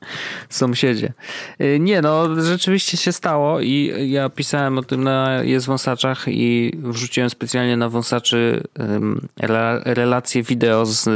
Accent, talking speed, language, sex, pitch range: native, 120 wpm, Polish, male, 110-145 Hz